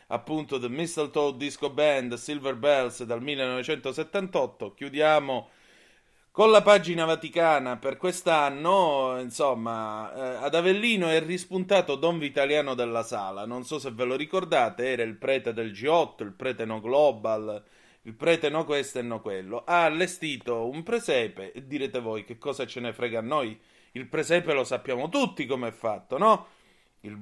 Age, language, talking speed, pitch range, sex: 30-49, Italian, 155 wpm, 115-160 Hz, male